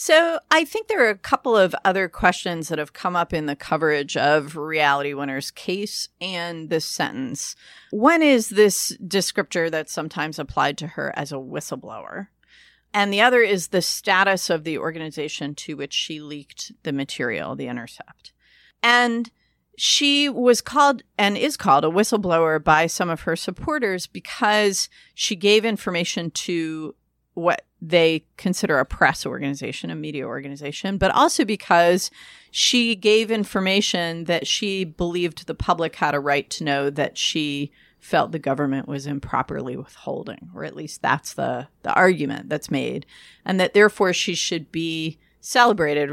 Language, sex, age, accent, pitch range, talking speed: English, female, 40-59, American, 150-210 Hz, 155 wpm